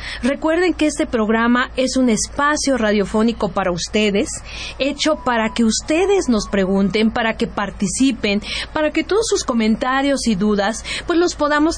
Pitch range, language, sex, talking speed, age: 215-275 Hz, Spanish, female, 150 wpm, 40-59